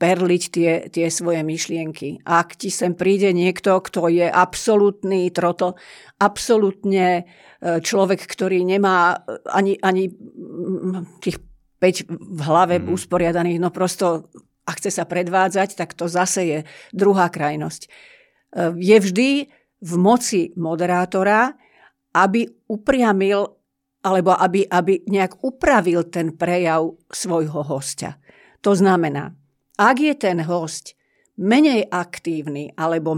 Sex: female